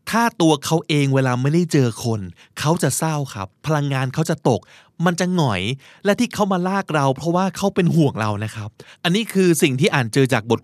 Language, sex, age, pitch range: Thai, male, 20-39, 125-170 Hz